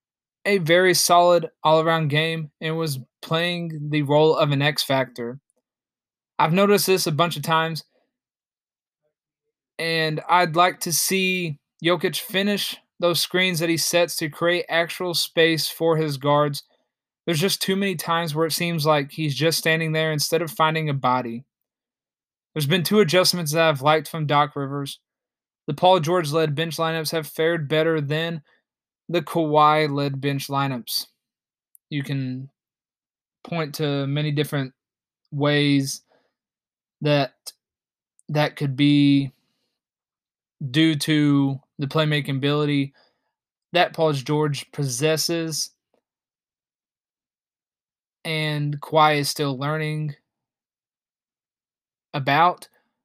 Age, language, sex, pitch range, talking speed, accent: 20-39, English, male, 145-165 Hz, 120 wpm, American